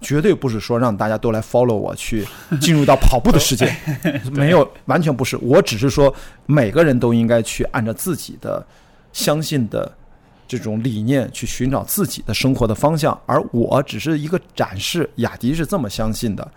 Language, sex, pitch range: Chinese, male, 115-145 Hz